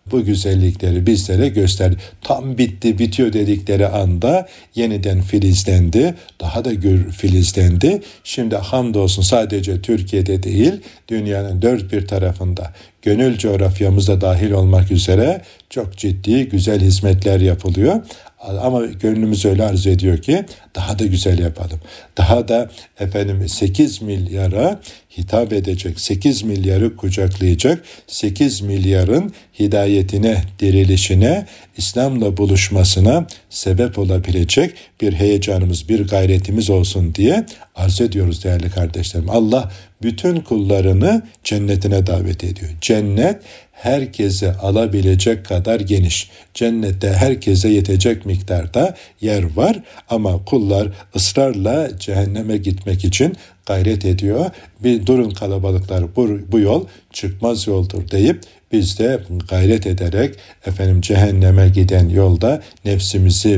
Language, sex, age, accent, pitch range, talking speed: Turkish, male, 60-79, native, 95-110 Hz, 110 wpm